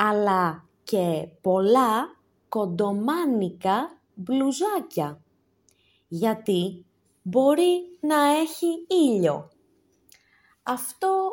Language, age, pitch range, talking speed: Greek, 20-39, 165-260 Hz, 60 wpm